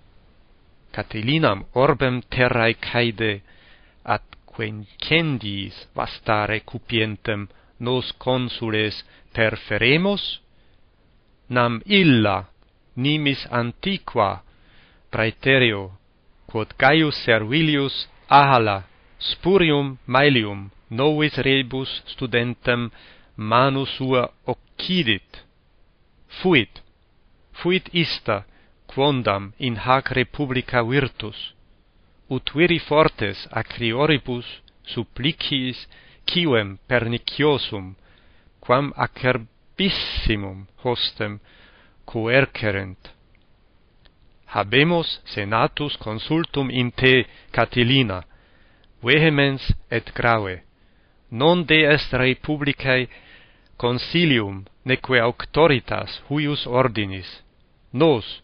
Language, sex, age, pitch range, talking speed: Italian, male, 40-59, 105-140 Hz, 70 wpm